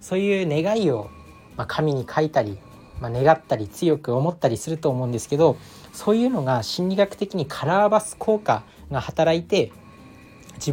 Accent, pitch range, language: native, 120-165 Hz, Japanese